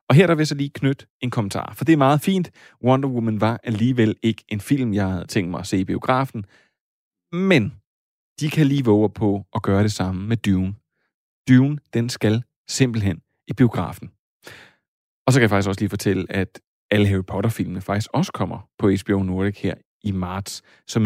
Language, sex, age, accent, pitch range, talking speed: Danish, male, 30-49, native, 100-125 Hz, 200 wpm